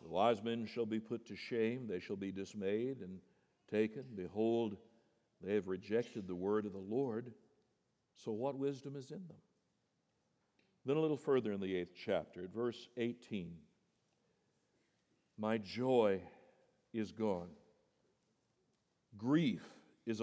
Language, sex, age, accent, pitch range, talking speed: English, male, 60-79, American, 100-155 Hz, 135 wpm